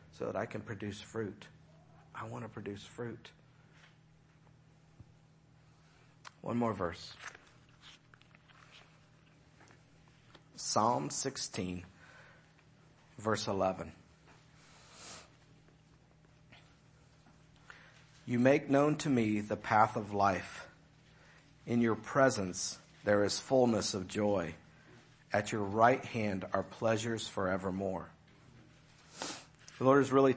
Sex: male